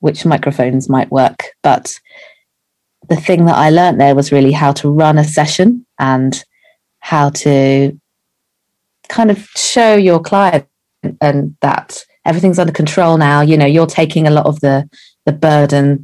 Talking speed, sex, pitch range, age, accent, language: 155 wpm, female, 140-165 Hz, 30-49, British, English